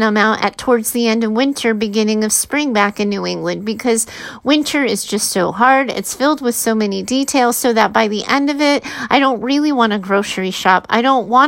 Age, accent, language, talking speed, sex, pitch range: 30-49, American, English, 230 wpm, female, 210-270 Hz